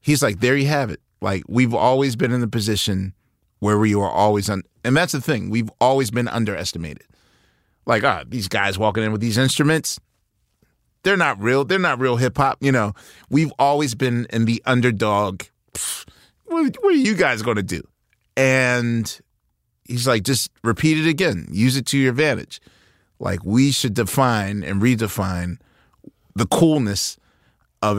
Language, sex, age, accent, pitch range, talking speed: English, male, 30-49, American, 105-130 Hz, 175 wpm